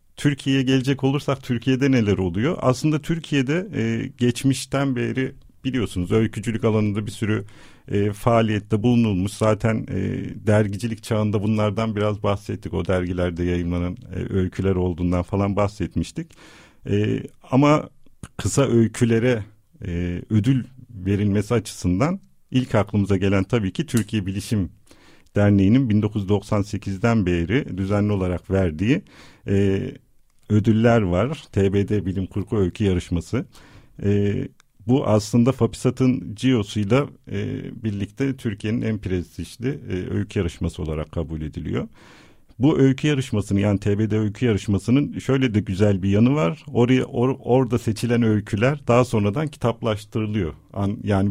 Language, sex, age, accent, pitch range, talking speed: Turkish, male, 50-69, native, 100-125 Hz, 120 wpm